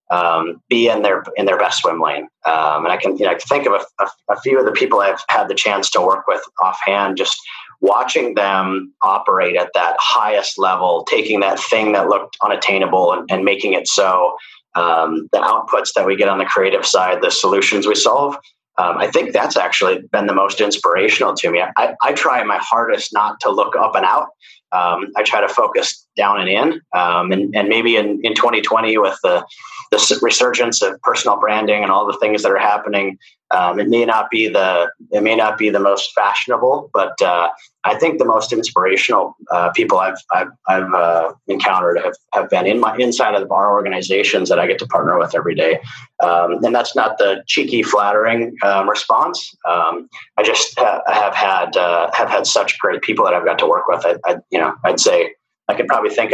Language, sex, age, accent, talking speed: English, male, 30-49, American, 210 wpm